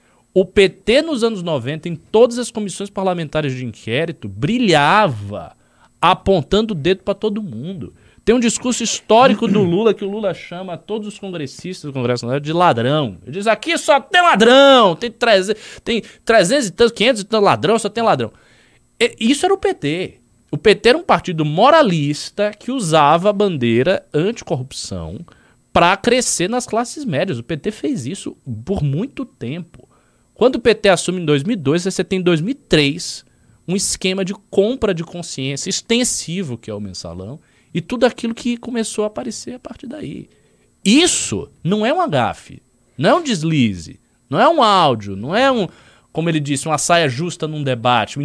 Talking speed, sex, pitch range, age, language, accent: 175 wpm, male, 135-215 Hz, 20-39, Portuguese, Brazilian